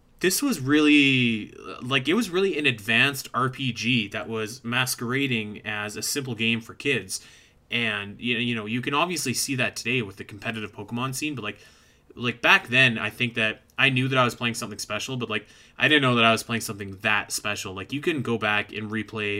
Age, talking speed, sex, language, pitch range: 20-39, 210 wpm, male, English, 110-130 Hz